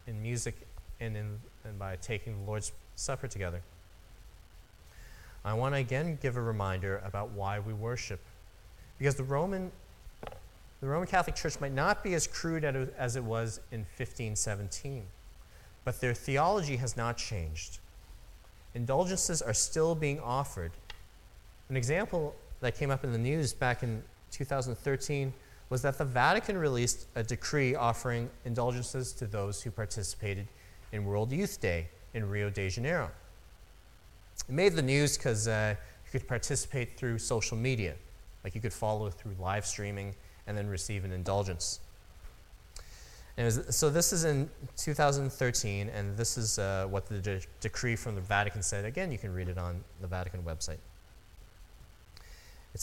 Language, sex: English, male